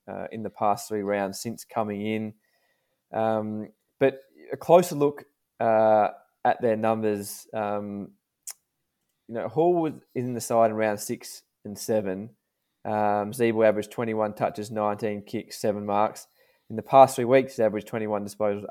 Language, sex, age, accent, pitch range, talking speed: English, male, 20-39, Australian, 105-115 Hz, 155 wpm